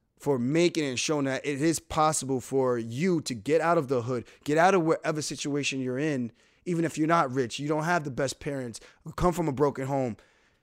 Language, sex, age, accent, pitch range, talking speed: English, male, 20-39, American, 120-150 Hz, 225 wpm